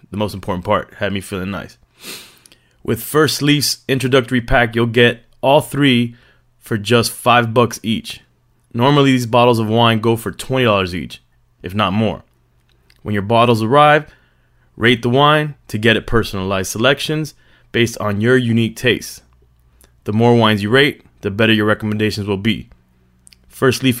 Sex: male